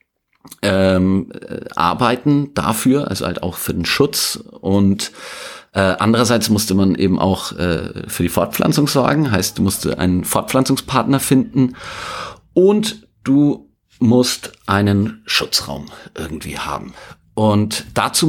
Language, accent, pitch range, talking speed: German, German, 100-130 Hz, 120 wpm